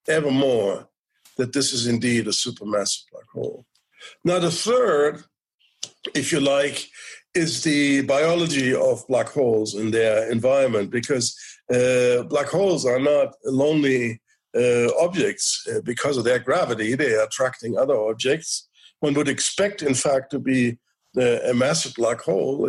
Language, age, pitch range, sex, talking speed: English, 50-69, 120-165 Hz, male, 145 wpm